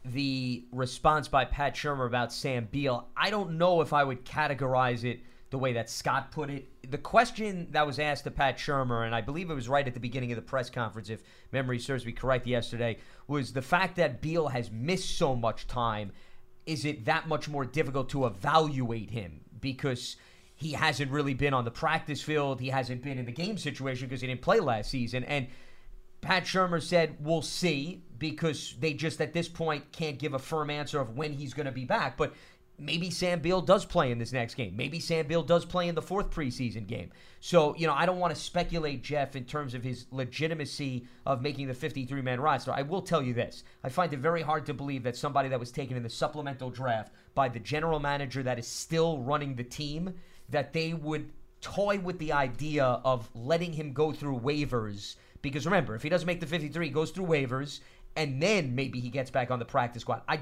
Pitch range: 130-165 Hz